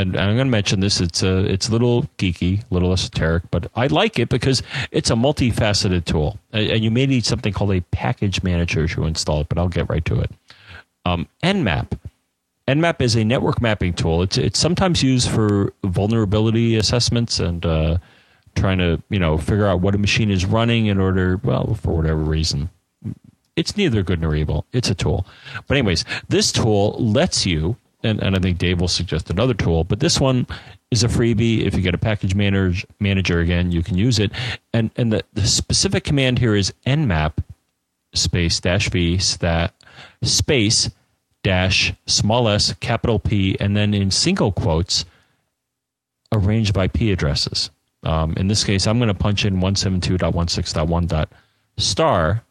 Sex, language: male, English